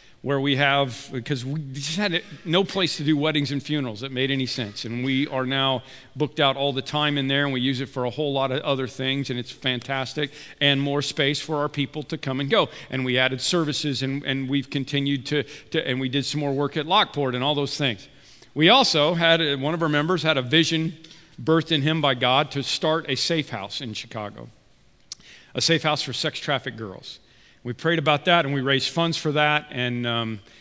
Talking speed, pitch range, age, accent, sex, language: 225 wpm, 125-150 Hz, 50-69, American, male, English